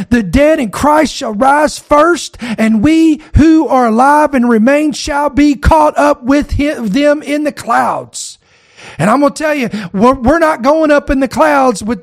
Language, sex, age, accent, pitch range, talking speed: English, male, 40-59, American, 220-275 Hz, 190 wpm